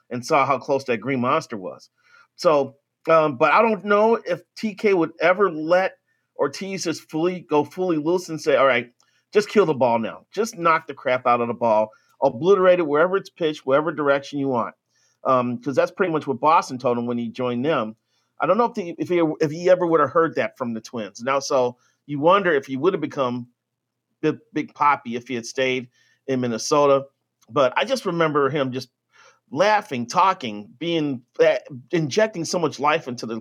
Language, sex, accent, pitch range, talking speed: English, male, American, 125-175 Hz, 200 wpm